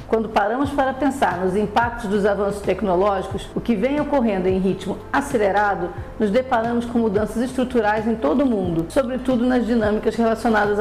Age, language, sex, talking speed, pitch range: 50-69, Portuguese, female, 160 wpm, 210-255 Hz